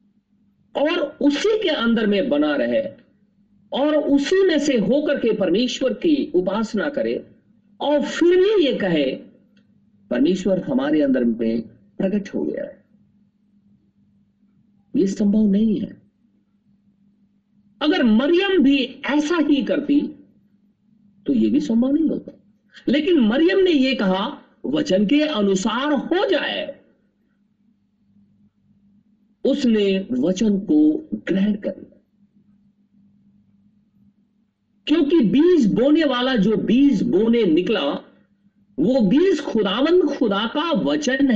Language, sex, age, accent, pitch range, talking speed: Hindi, male, 50-69, native, 200-285 Hz, 110 wpm